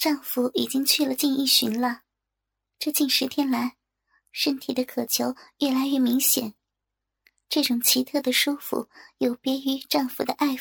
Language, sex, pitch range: Chinese, male, 255-290 Hz